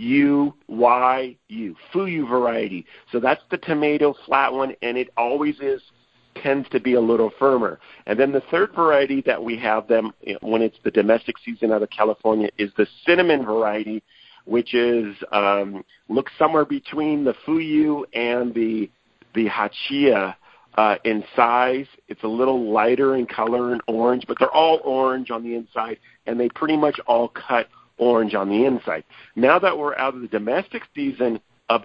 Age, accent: 50-69, American